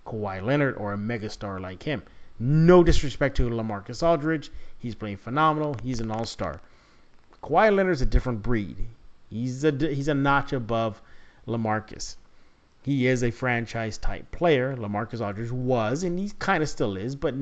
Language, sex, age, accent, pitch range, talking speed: English, male, 30-49, American, 105-135 Hz, 160 wpm